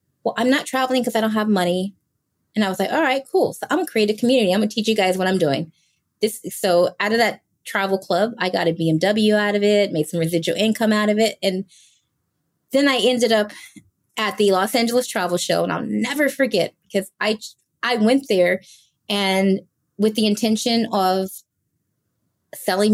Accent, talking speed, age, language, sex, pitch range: American, 205 wpm, 20-39, English, female, 185-240 Hz